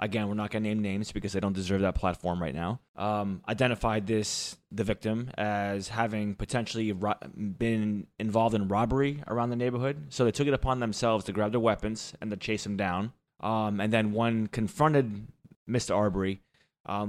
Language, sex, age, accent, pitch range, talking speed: English, male, 20-39, American, 100-110 Hz, 190 wpm